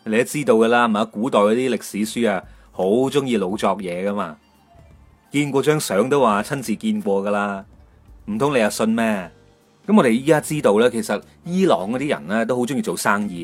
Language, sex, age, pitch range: Chinese, male, 30-49, 105-165 Hz